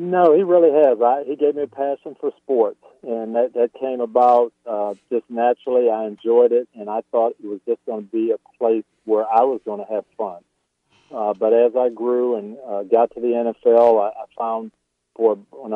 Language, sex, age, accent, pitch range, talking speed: English, male, 50-69, American, 110-135 Hz, 215 wpm